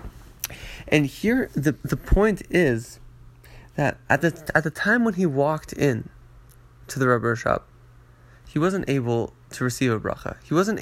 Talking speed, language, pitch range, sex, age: 160 wpm, English, 120-145 Hz, male, 20-39